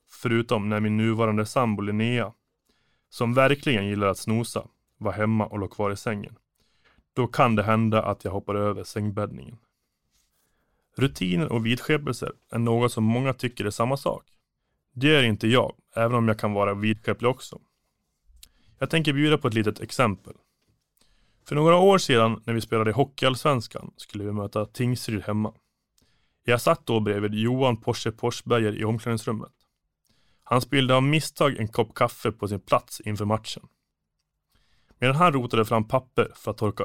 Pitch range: 105-125 Hz